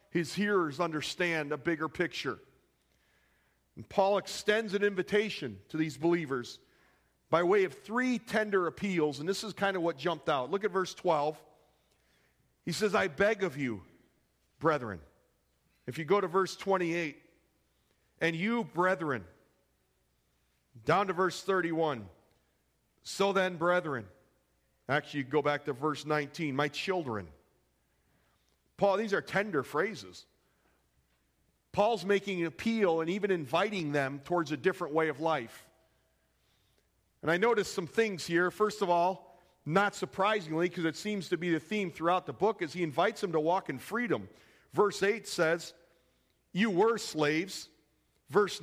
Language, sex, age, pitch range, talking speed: English, male, 40-59, 150-200 Hz, 145 wpm